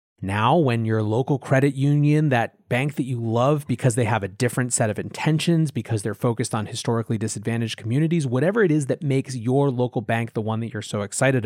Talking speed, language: 210 wpm, English